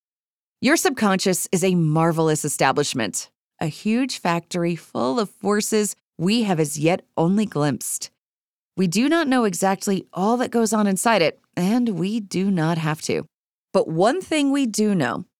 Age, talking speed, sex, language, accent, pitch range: 30-49, 160 wpm, female, English, American, 160-225 Hz